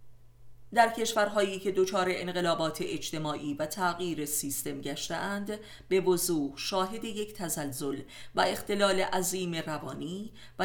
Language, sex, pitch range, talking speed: Persian, female, 145-190 Hz, 120 wpm